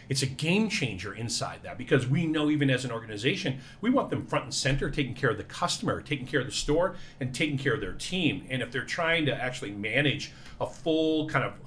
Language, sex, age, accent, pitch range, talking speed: English, male, 40-59, American, 125-145 Hz, 235 wpm